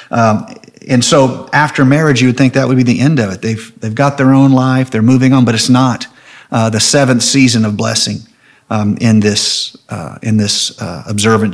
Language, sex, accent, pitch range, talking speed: English, male, American, 105-125 Hz, 210 wpm